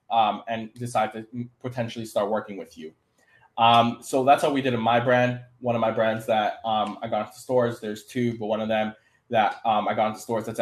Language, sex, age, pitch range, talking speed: English, male, 20-39, 110-130 Hz, 230 wpm